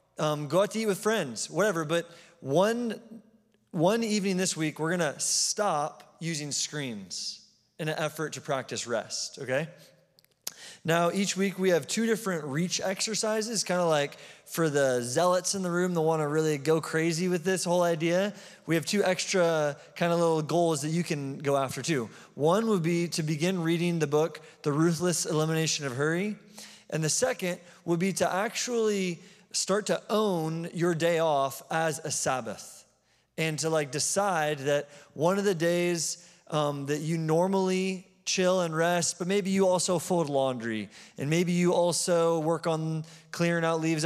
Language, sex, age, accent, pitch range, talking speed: English, male, 20-39, American, 155-185 Hz, 175 wpm